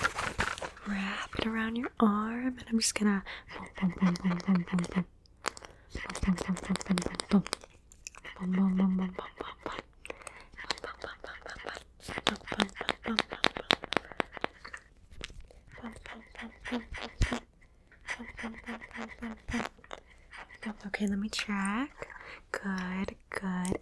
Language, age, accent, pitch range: English, 20-39, American, 195-250 Hz